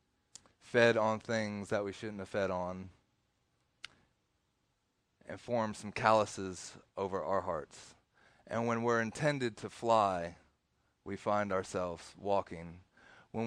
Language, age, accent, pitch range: English, 30-49, American, 100-130 Hz